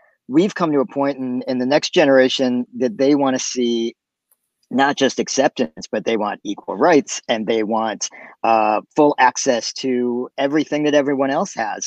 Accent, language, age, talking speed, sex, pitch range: American, English, 40-59, 170 wpm, male, 115-135 Hz